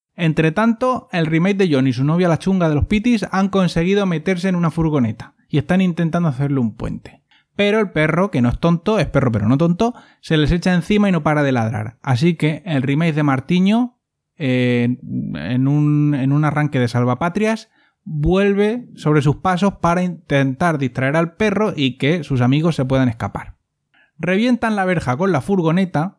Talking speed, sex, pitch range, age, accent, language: 190 wpm, male, 135-180 Hz, 20-39, Spanish, Spanish